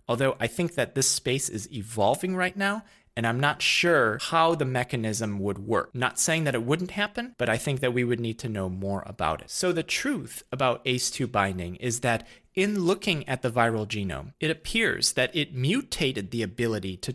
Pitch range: 110-155 Hz